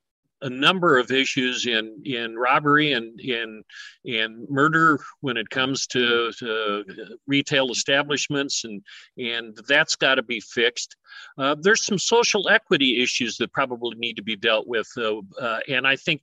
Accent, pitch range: American, 115-140 Hz